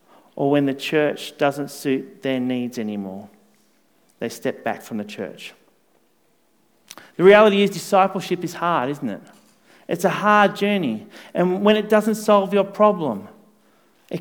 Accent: Australian